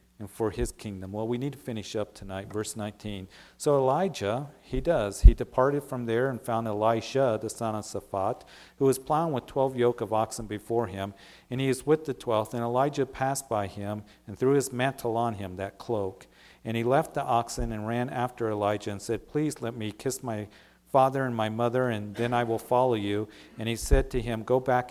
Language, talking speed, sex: English, 215 wpm, male